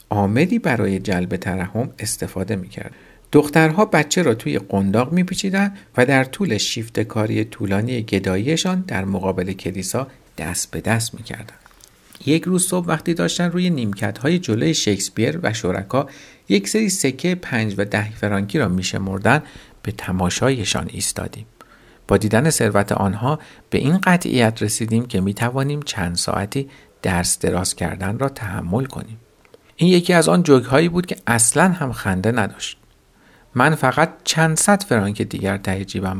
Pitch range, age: 100-150 Hz, 50-69